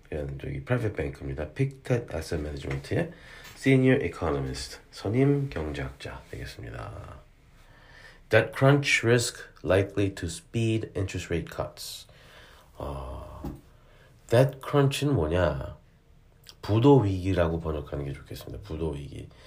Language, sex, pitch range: Korean, male, 85-125 Hz